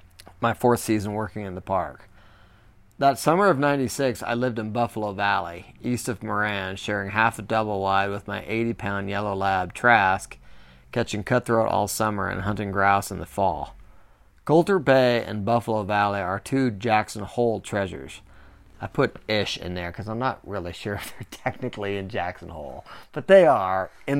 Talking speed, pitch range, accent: 175 wpm, 100-120 Hz, American